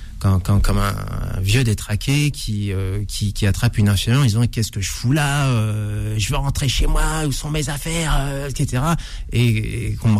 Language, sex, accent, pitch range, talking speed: French, male, French, 100-125 Hz, 220 wpm